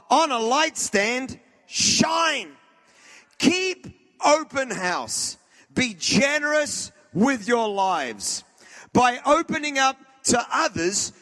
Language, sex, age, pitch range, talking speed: English, male, 40-59, 225-280 Hz, 95 wpm